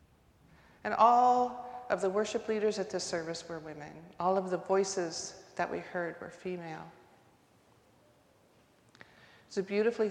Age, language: 40-59, English